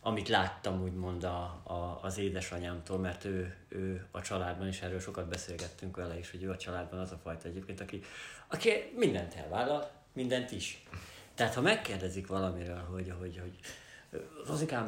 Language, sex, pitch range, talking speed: Hungarian, male, 90-110 Hz, 155 wpm